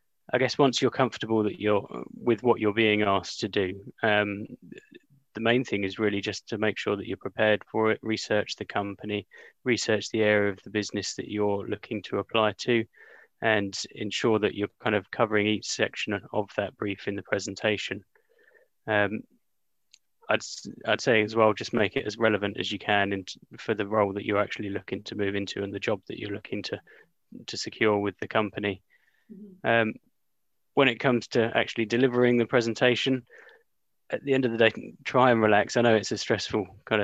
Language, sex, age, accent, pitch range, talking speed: English, male, 20-39, British, 100-115 Hz, 195 wpm